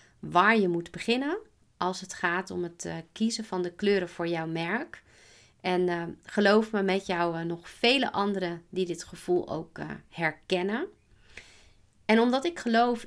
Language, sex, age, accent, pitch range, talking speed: Dutch, female, 30-49, Dutch, 175-215 Hz, 165 wpm